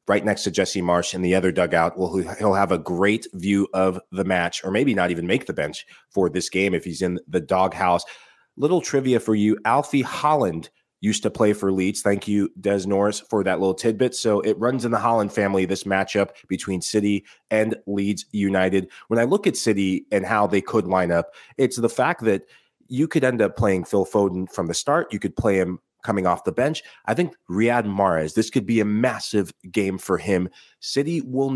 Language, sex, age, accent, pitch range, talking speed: English, male, 30-49, American, 95-110 Hz, 215 wpm